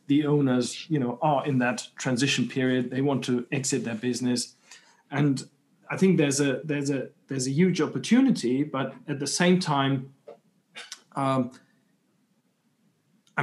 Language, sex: English, male